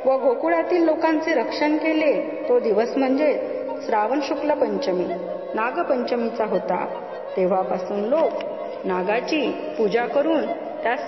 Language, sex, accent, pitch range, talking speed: Marathi, female, native, 210-300 Hz, 105 wpm